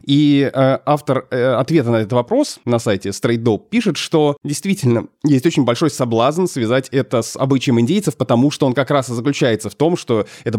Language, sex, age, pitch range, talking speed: Russian, male, 20-39, 120-150 Hz, 200 wpm